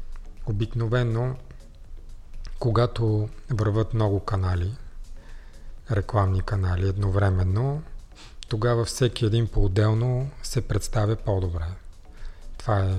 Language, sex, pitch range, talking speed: Bulgarian, male, 95-115 Hz, 75 wpm